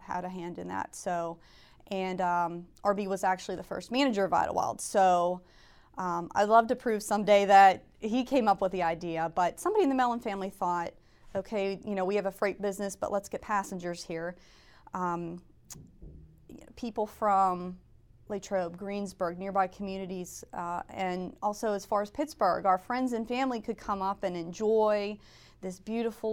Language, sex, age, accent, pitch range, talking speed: English, female, 30-49, American, 175-210 Hz, 170 wpm